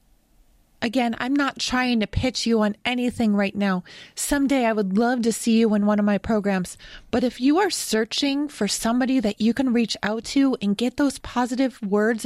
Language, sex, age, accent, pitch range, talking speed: English, female, 30-49, American, 205-250 Hz, 200 wpm